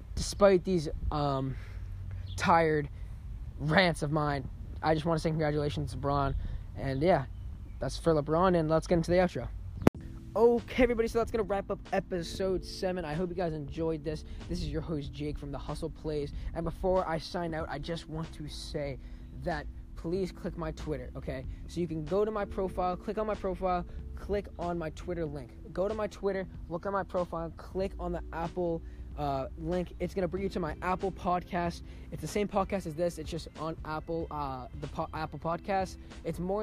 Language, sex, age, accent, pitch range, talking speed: English, male, 20-39, American, 150-180 Hz, 200 wpm